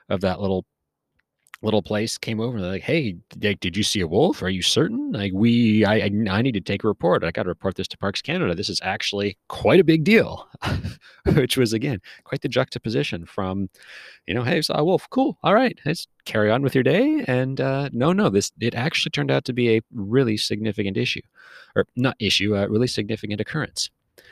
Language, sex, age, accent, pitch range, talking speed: English, male, 30-49, American, 95-120 Hz, 220 wpm